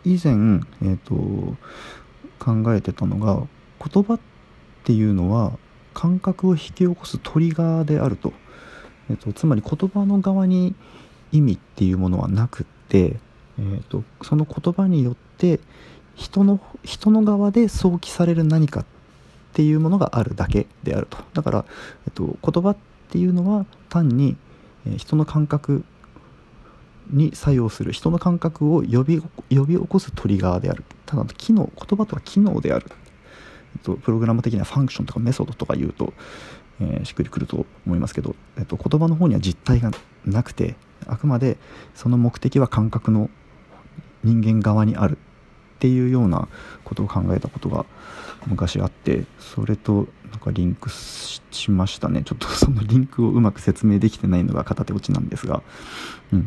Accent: native